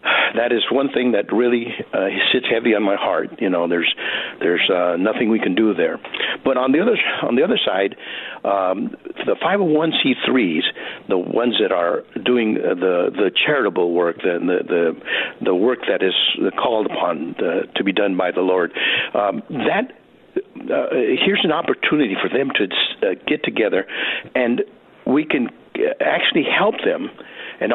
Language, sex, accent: English, male, American